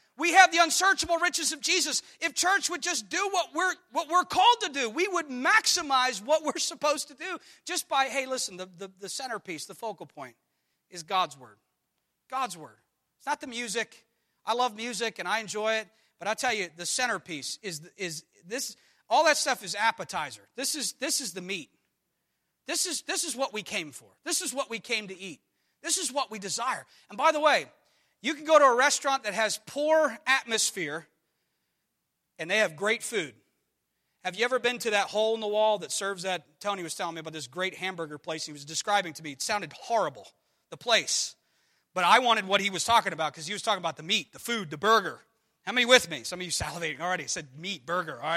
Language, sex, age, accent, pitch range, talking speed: English, male, 40-59, American, 185-290 Hz, 220 wpm